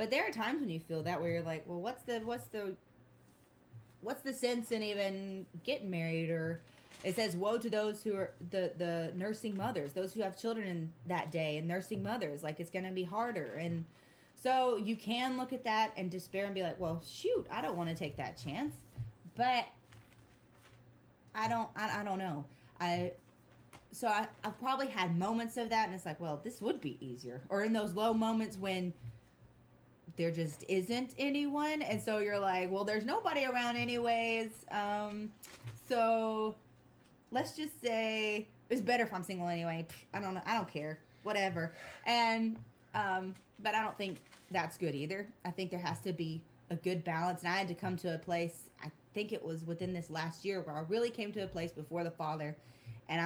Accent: American